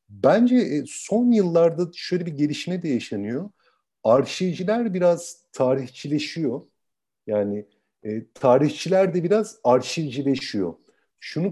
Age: 50-69